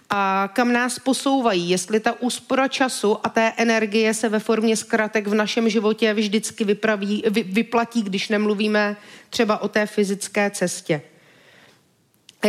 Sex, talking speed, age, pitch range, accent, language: female, 135 wpm, 40-59, 215-245 Hz, native, Czech